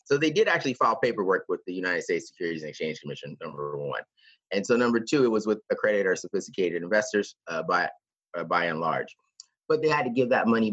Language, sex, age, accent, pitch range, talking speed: English, male, 30-49, American, 100-130 Hz, 225 wpm